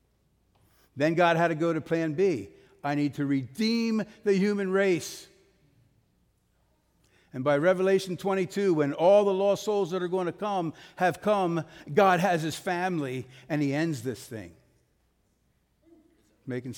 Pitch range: 140-195 Hz